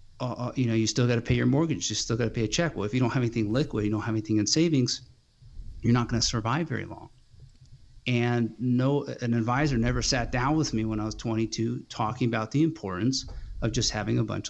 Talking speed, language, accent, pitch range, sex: 245 wpm, English, American, 105-130 Hz, male